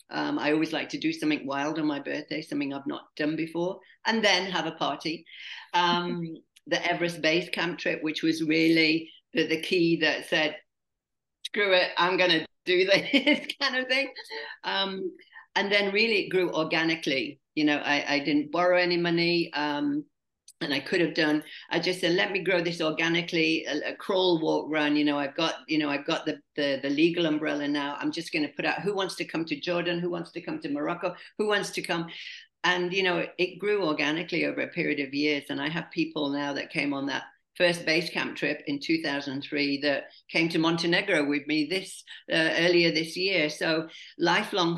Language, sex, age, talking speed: English, female, 50-69, 205 wpm